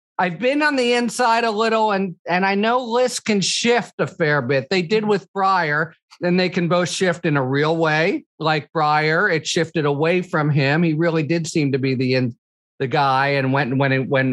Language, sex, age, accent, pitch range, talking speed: English, male, 50-69, American, 145-195 Hz, 220 wpm